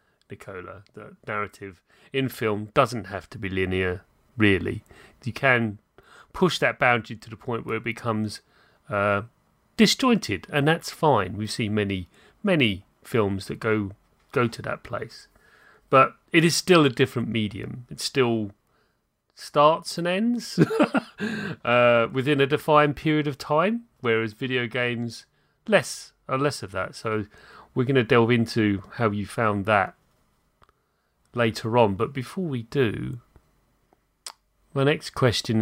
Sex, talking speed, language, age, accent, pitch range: male, 140 wpm, English, 30-49, British, 110-145 Hz